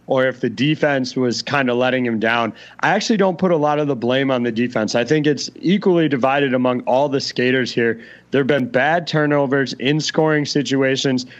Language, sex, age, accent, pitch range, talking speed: English, male, 30-49, American, 125-150 Hz, 210 wpm